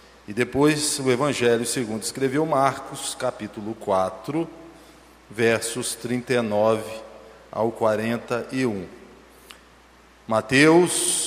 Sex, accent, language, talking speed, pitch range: male, Brazilian, Portuguese, 75 wpm, 115-160 Hz